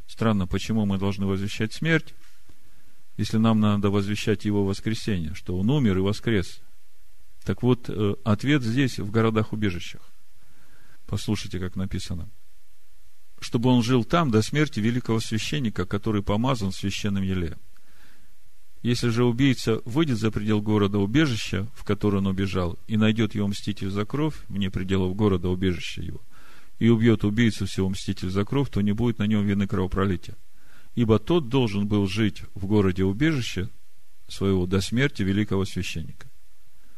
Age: 40-59